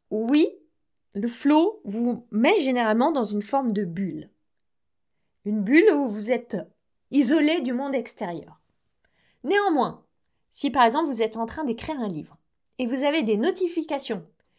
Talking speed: 150 wpm